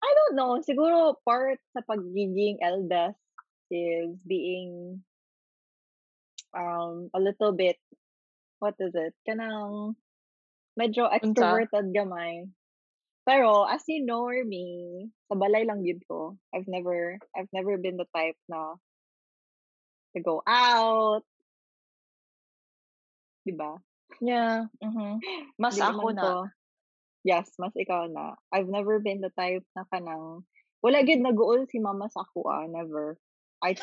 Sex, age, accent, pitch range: female, 20-39, native, 180-235 Hz